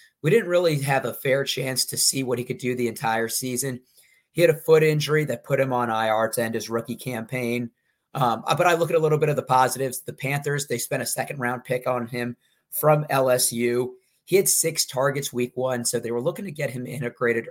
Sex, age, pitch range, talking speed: male, 30-49, 125-155 Hz, 230 wpm